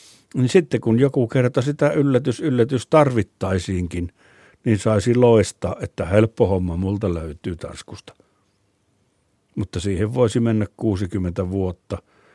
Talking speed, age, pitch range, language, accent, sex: 115 wpm, 60-79, 100-120 Hz, Finnish, native, male